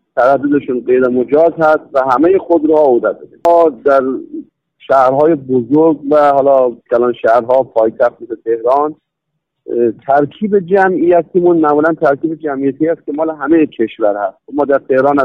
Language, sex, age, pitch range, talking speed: Persian, male, 50-69, 135-170 Hz, 140 wpm